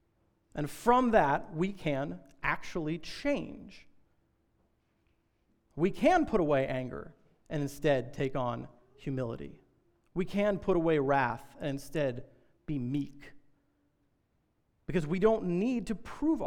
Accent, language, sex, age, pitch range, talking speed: American, English, male, 40-59, 140-195 Hz, 115 wpm